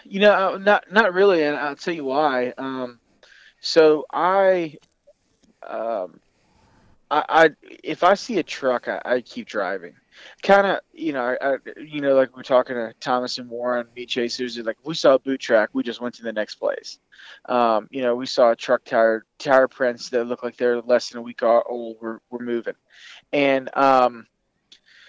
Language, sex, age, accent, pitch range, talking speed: English, male, 20-39, American, 120-150 Hz, 190 wpm